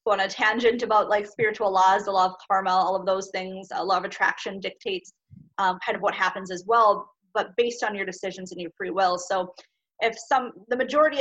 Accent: American